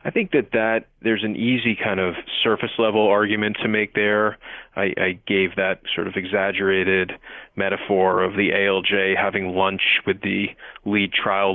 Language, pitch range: English, 95-110 Hz